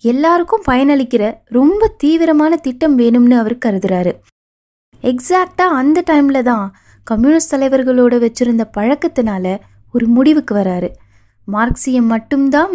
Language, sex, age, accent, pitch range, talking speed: Tamil, female, 20-39, native, 215-285 Hz, 100 wpm